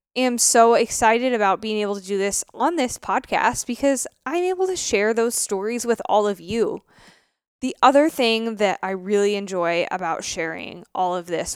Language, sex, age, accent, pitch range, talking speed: English, female, 20-39, American, 200-250 Hz, 185 wpm